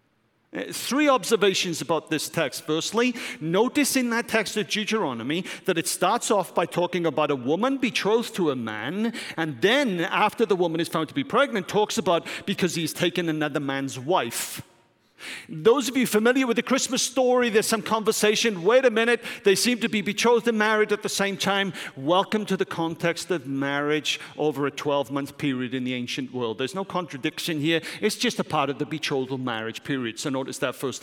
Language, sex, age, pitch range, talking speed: English, male, 40-59, 160-235 Hz, 190 wpm